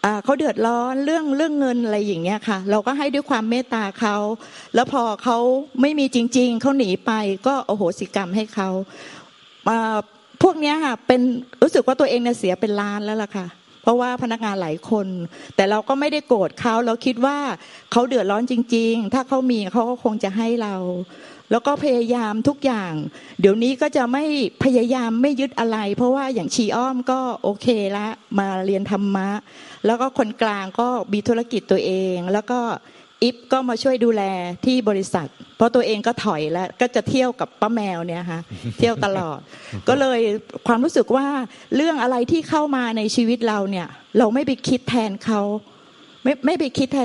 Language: Thai